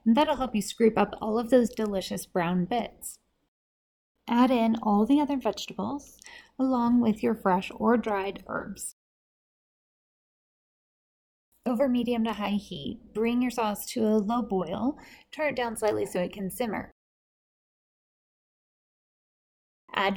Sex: female